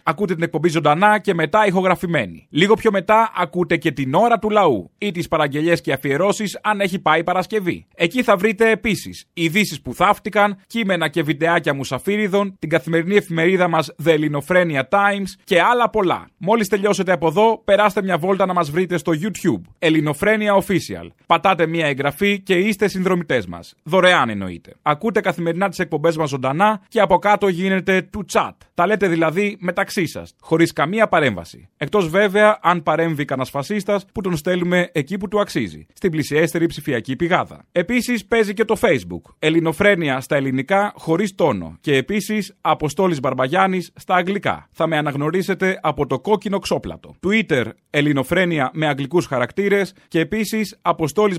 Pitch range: 155-205 Hz